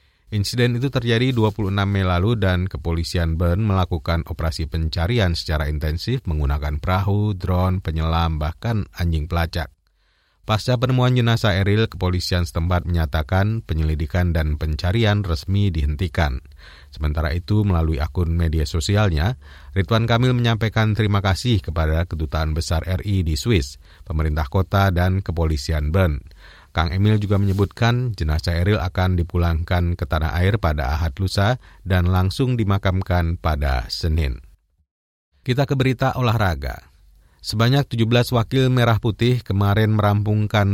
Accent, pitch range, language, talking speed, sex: native, 80-105 Hz, Indonesian, 125 wpm, male